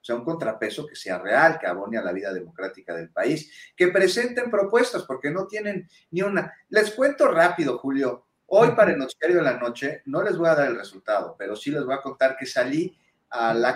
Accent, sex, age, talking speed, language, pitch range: Mexican, male, 40-59, 225 wpm, Spanish, 125-195 Hz